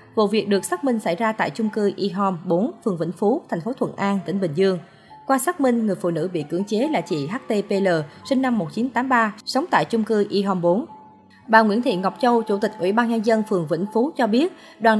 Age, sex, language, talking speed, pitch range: 20-39, female, Vietnamese, 250 wpm, 180-235 Hz